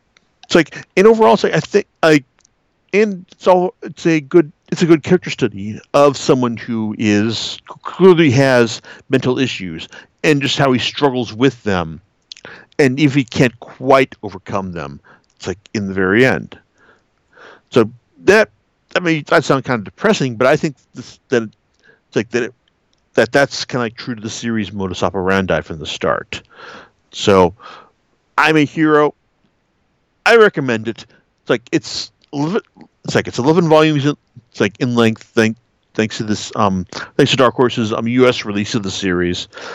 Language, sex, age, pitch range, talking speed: English, male, 50-69, 110-145 Hz, 170 wpm